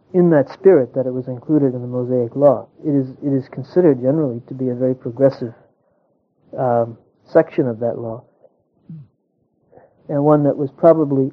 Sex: male